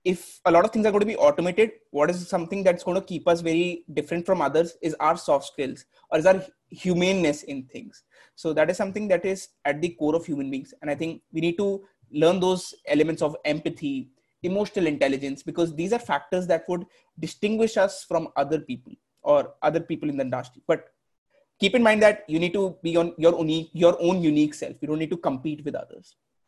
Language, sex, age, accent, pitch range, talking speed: English, male, 20-39, Indian, 150-195 Hz, 220 wpm